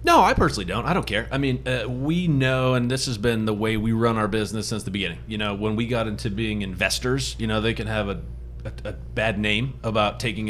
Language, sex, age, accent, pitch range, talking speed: English, male, 30-49, American, 100-120 Hz, 255 wpm